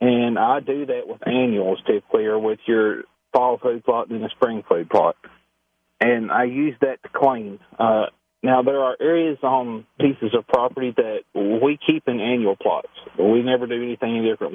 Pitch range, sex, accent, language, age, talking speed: 115-155 Hz, male, American, English, 40-59, 180 wpm